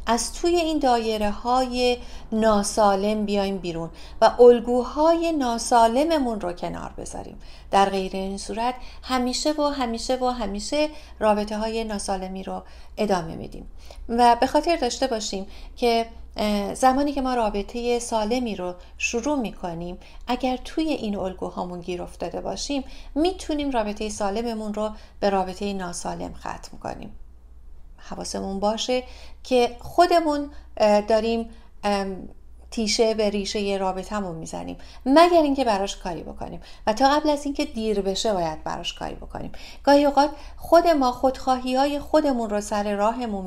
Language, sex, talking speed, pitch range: Persian, female, 130 wpm, 200-255 Hz